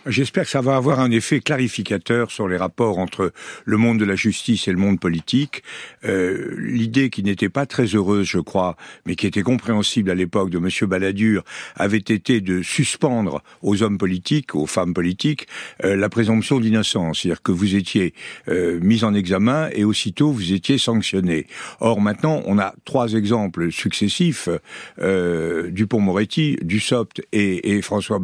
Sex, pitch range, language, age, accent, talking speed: male, 100-125 Hz, French, 60-79, French, 170 wpm